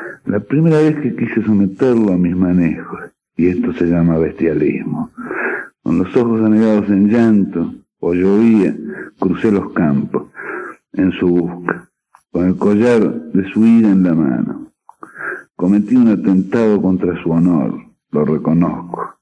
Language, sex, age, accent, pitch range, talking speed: Spanish, male, 60-79, Argentinian, 90-110 Hz, 140 wpm